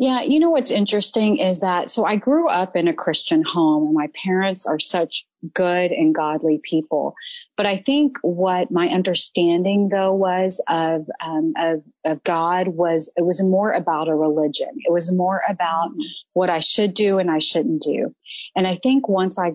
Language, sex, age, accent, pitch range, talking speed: English, female, 30-49, American, 160-195 Hz, 185 wpm